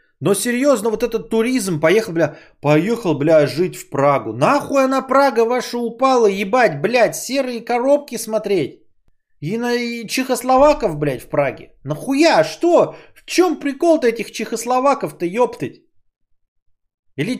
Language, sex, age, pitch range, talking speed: Bulgarian, male, 30-49, 200-255 Hz, 130 wpm